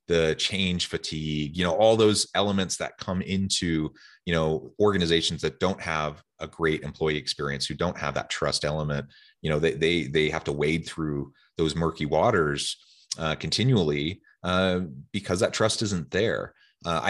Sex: male